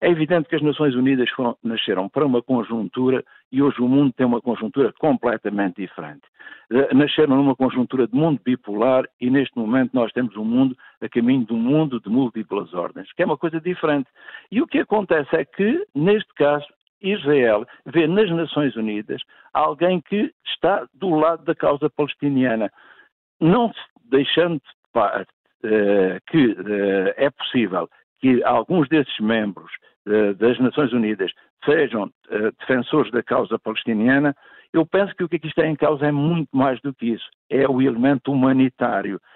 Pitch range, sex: 130-165 Hz, male